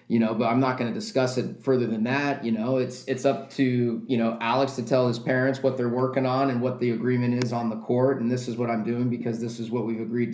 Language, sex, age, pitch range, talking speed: English, male, 30-49, 120-140 Hz, 280 wpm